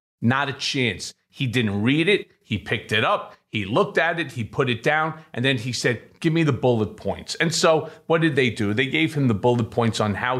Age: 40-59